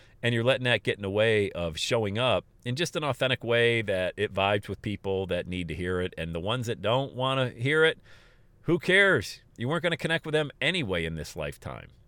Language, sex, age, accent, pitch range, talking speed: English, male, 40-59, American, 95-125 Hz, 240 wpm